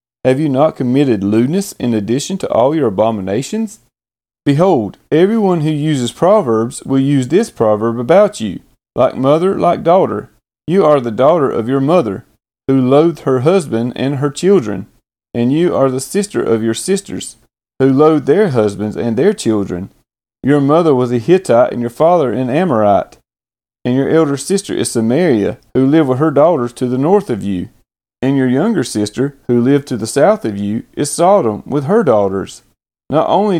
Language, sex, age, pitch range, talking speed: English, male, 30-49, 120-160 Hz, 175 wpm